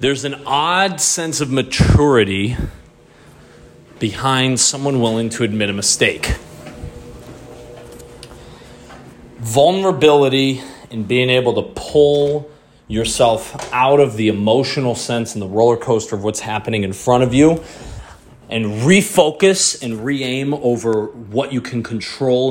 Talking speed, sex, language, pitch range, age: 120 wpm, male, English, 95-125 Hz, 30-49